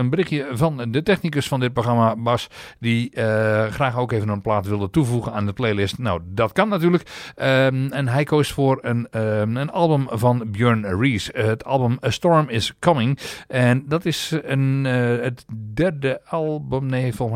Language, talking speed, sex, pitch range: English, 185 wpm, male, 105-135 Hz